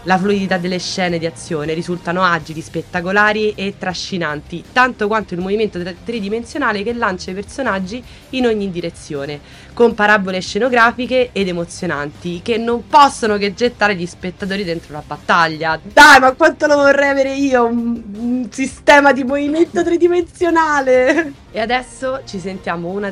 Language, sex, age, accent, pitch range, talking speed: Italian, female, 20-39, native, 170-235 Hz, 145 wpm